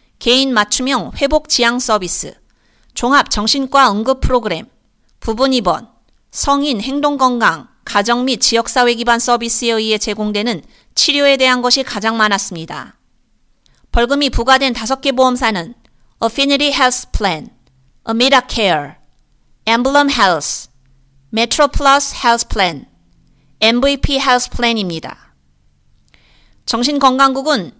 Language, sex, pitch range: Korean, female, 225-275 Hz